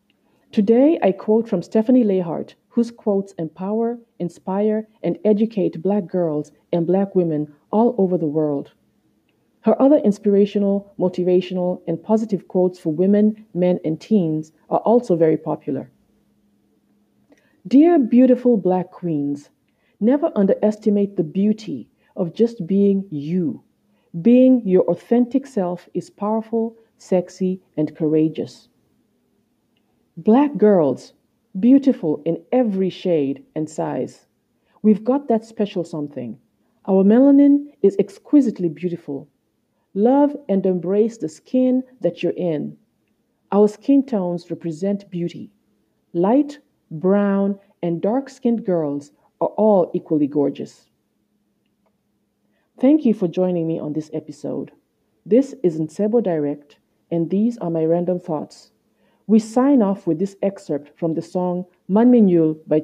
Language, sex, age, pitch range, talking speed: English, female, 40-59, 165-220 Hz, 120 wpm